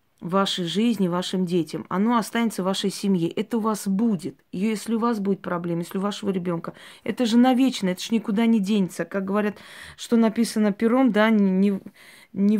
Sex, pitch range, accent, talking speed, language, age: female, 190-230 Hz, native, 190 wpm, Russian, 20-39